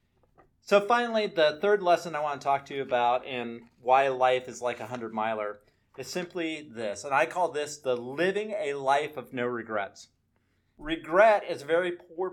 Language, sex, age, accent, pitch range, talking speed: English, male, 40-59, American, 125-170 Hz, 190 wpm